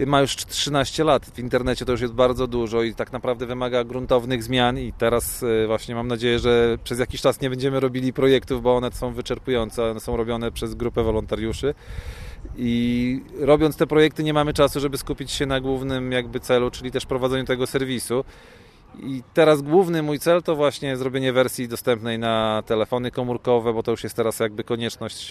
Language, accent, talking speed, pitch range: Polish, native, 185 wpm, 115-130 Hz